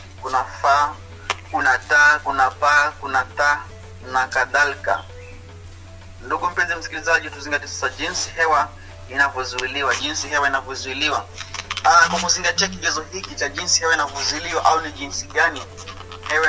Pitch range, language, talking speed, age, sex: 95-135 Hz, English, 125 wpm, 30-49, male